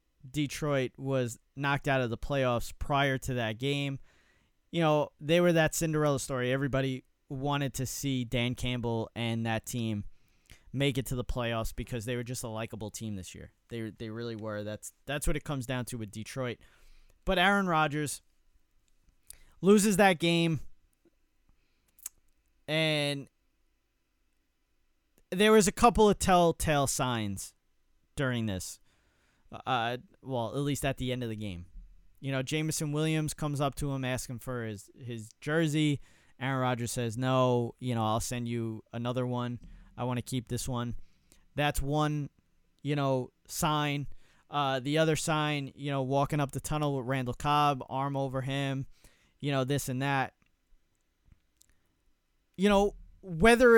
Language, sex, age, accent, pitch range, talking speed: English, male, 30-49, American, 115-150 Hz, 155 wpm